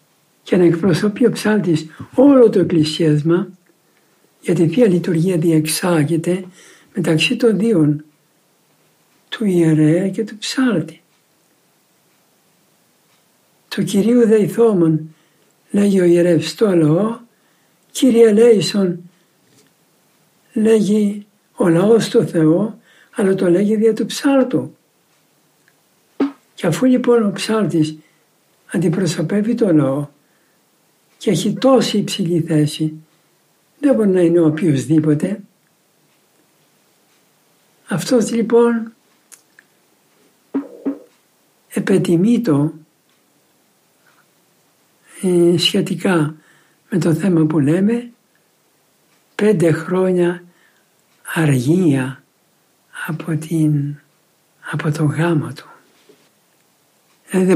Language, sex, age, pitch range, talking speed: Greek, male, 60-79, 160-220 Hz, 85 wpm